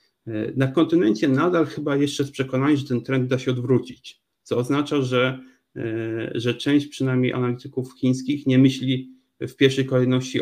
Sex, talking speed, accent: male, 150 wpm, native